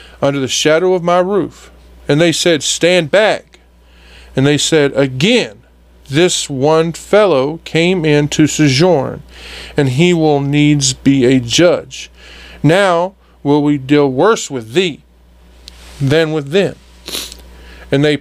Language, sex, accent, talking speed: English, male, American, 135 wpm